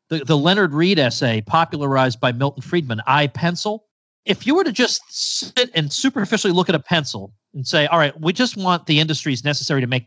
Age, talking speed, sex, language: 40-59, 210 wpm, male, English